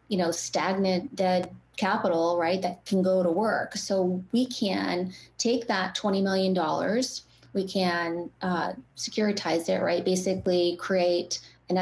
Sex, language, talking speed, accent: female, English, 135 wpm, American